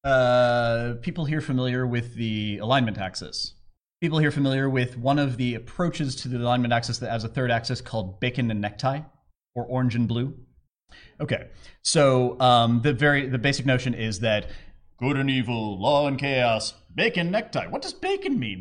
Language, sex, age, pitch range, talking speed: English, male, 30-49, 110-140 Hz, 175 wpm